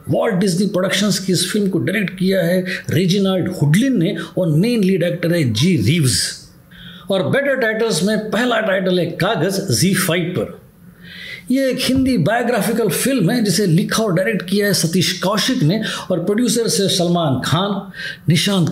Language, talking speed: Hindi, 165 wpm